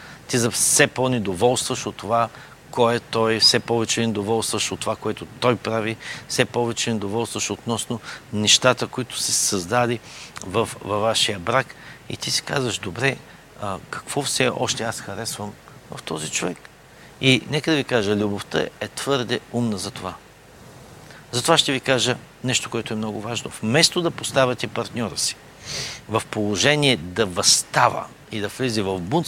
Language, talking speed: Bulgarian, 155 wpm